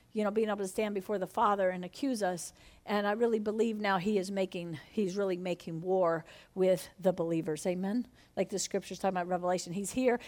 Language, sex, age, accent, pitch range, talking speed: English, female, 50-69, American, 185-285 Hz, 210 wpm